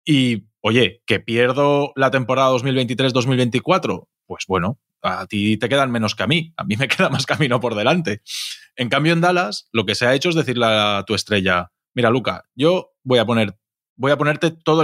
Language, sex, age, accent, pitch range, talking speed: Spanish, male, 20-39, Spanish, 105-150 Hz, 190 wpm